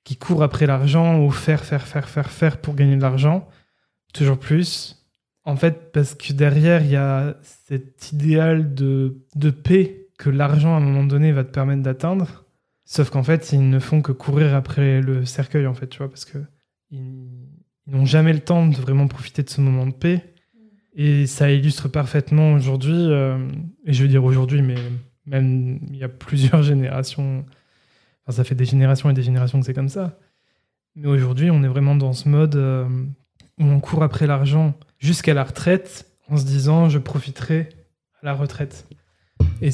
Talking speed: 185 wpm